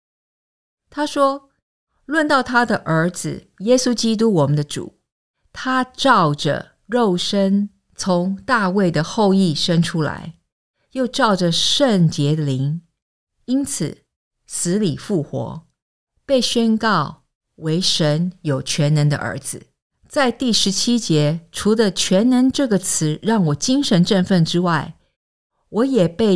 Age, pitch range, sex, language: 50-69, 160-225 Hz, female, English